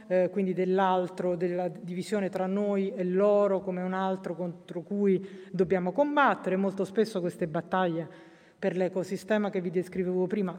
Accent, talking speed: native, 145 wpm